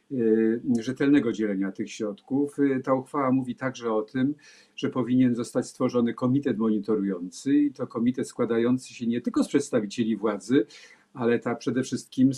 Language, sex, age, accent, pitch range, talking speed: Polish, male, 50-69, native, 115-140 Hz, 145 wpm